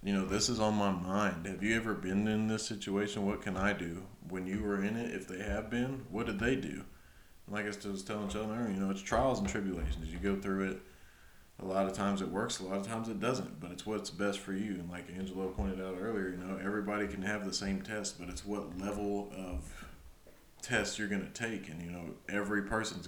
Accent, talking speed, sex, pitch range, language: American, 245 wpm, male, 95-100 Hz, English